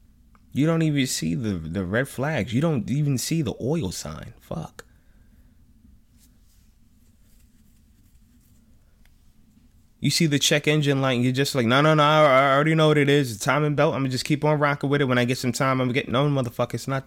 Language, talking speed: English, 210 wpm